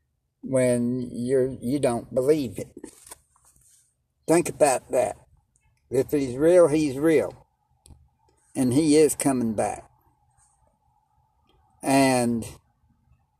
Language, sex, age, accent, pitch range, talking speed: English, male, 60-79, American, 115-140 Hz, 90 wpm